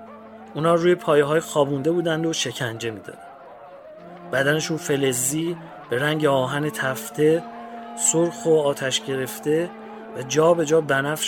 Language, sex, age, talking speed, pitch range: English, male, 30-49, 135 wpm, 150-185 Hz